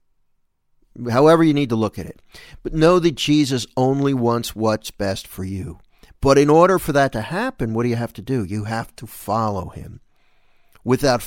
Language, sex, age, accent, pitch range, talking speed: English, male, 50-69, American, 110-150 Hz, 190 wpm